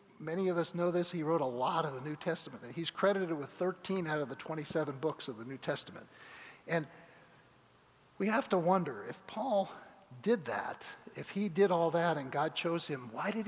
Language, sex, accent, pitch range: English, male, American, 140-190 Hz